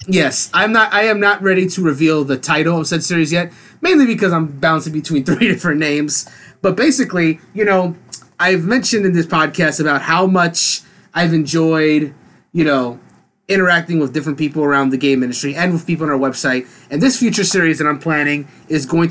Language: English